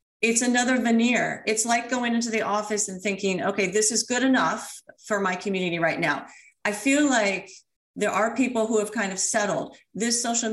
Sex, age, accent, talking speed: female, 40-59, American, 195 wpm